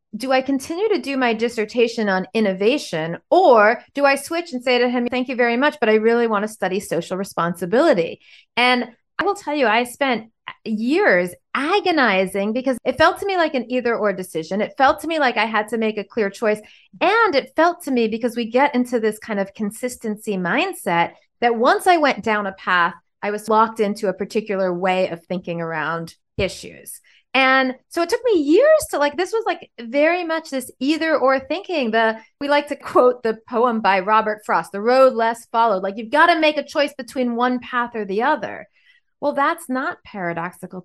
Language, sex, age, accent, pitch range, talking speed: English, female, 30-49, American, 200-275 Hz, 205 wpm